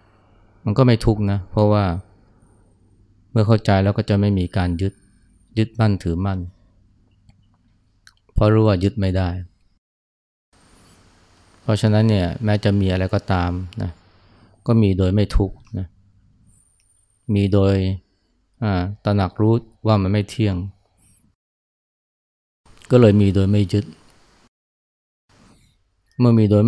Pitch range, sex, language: 95-105 Hz, male, Thai